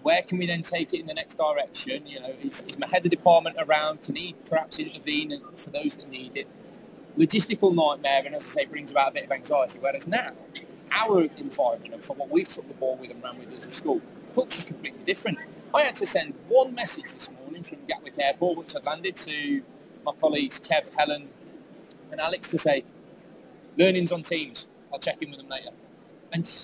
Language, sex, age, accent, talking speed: English, male, 30-49, British, 215 wpm